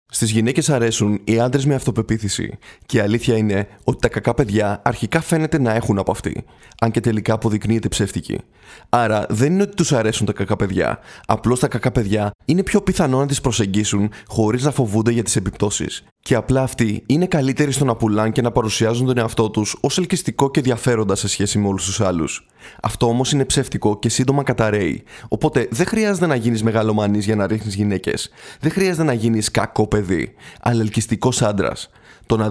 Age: 20-39